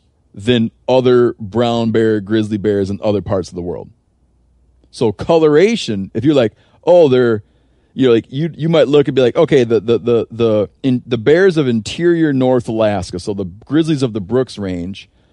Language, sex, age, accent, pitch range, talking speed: English, male, 30-49, American, 100-130 Hz, 180 wpm